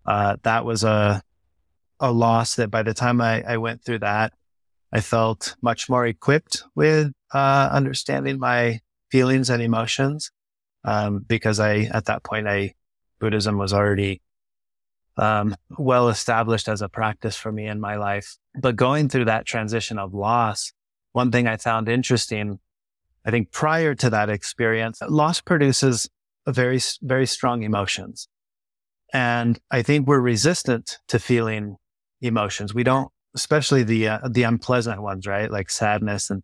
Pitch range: 105-125 Hz